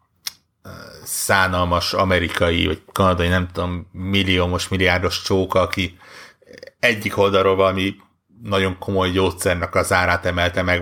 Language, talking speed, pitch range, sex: Hungarian, 110 wpm, 90-100 Hz, male